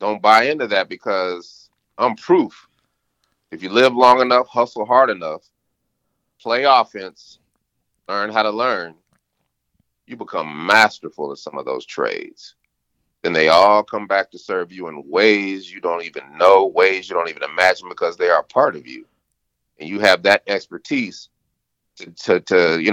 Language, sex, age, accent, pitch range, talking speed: English, male, 30-49, American, 95-125 Hz, 165 wpm